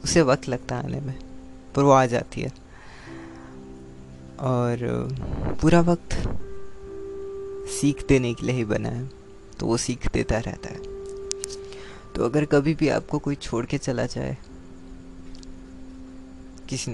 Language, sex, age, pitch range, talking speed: Hindi, female, 20-39, 80-130 Hz, 135 wpm